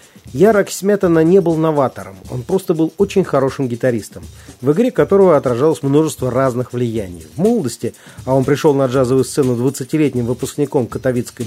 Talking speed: 150 wpm